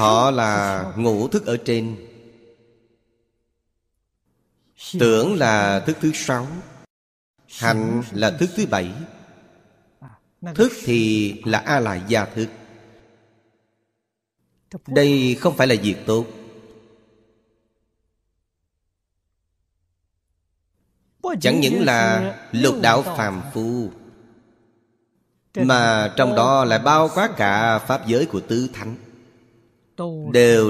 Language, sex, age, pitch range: Vietnamese, male, 30-49, 105-125 Hz